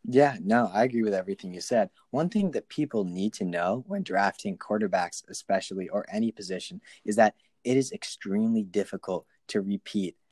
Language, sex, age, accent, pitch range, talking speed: English, male, 20-39, American, 100-135 Hz, 175 wpm